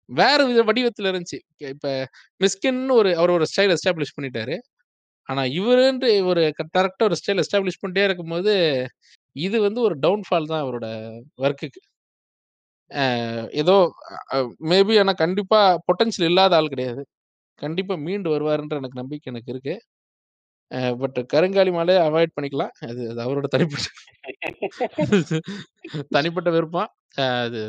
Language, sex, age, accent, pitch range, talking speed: Tamil, male, 20-39, native, 135-195 Hz, 115 wpm